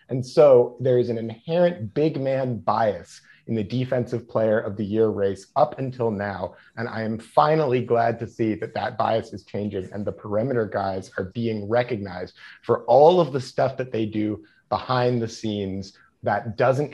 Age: 30-49